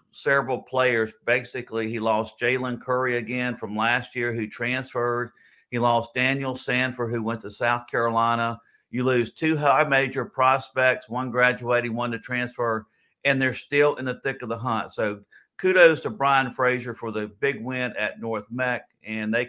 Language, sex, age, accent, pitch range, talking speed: English, male, 50-69, American, 115-140 Hz, 170 wpm